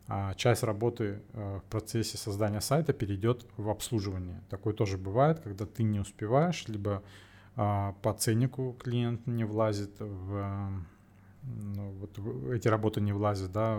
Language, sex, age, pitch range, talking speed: Russian, male, 20-39, 100-115 Hz, 130 wpm